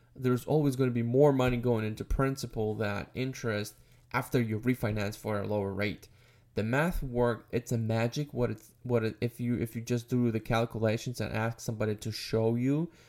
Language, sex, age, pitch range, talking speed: English, male, 10-29, 110-130 Hz, 195 wpm